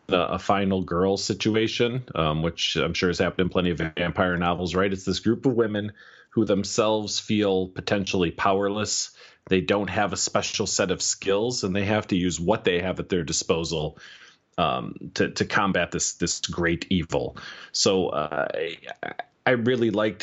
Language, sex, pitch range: English, male, 95-120 Hz